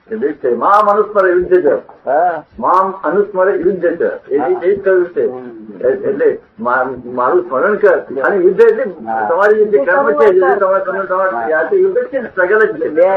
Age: 60-79